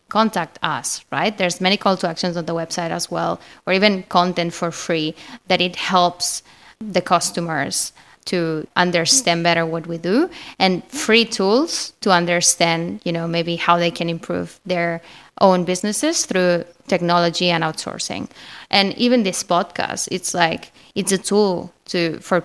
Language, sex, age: English, female, 20-39